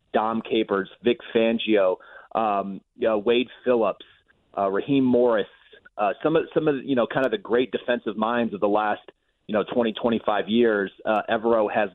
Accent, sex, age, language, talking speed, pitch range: American, male, 30-49, English, 180 wpm, 110-125 Hz